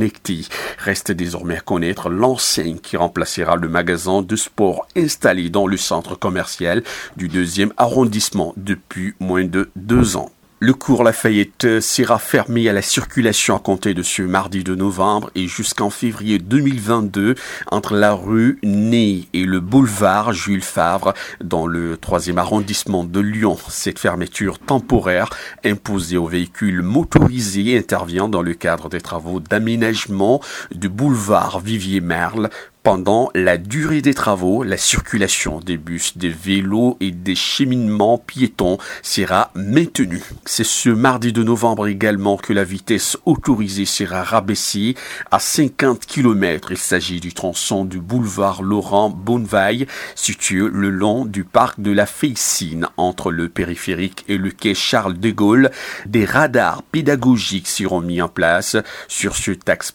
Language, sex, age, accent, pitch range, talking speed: French, male, 50-69, French, 90-115 Hz, 140 wpm